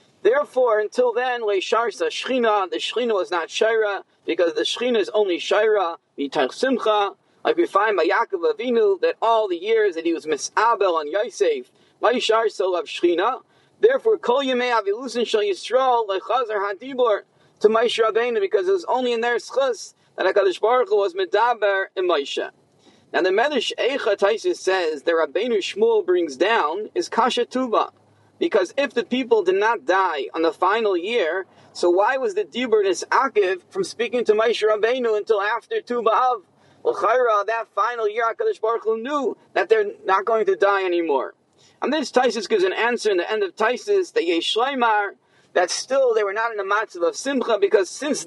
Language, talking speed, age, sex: English, 175 wpm, 40-59, male